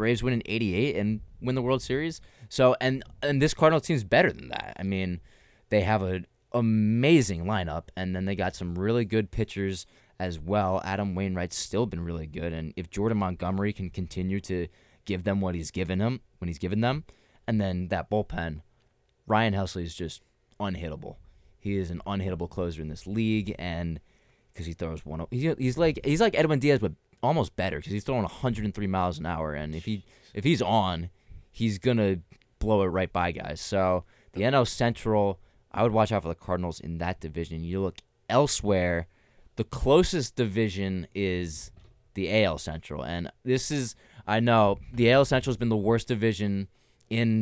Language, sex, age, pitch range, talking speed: English, male, 20-39, 90-115 Hz, 190 wpm